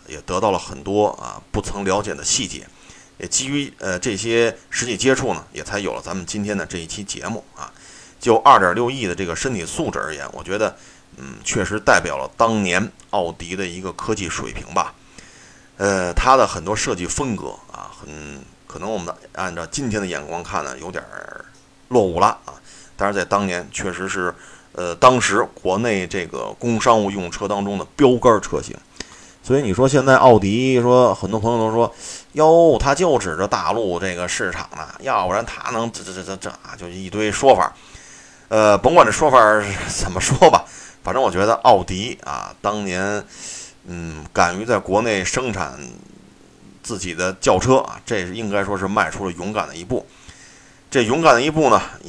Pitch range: 90-110 Hz